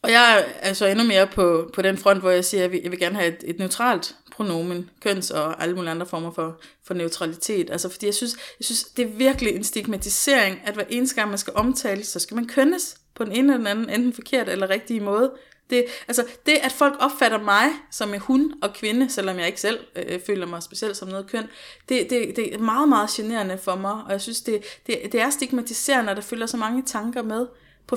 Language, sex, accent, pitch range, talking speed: Danish, female, native, 195-245 Hz, 245 wpm